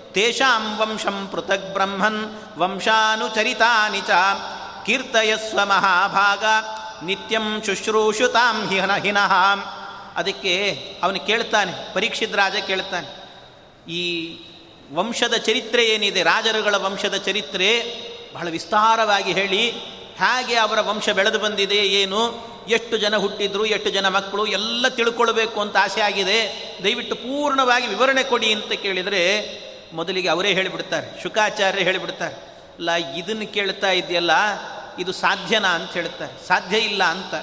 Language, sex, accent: Kannada, male, native